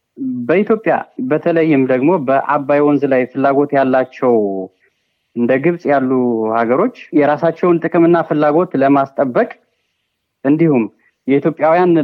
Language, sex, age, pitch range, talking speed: Amharic, male, 30-49, 130-170 Hz, 90 wpm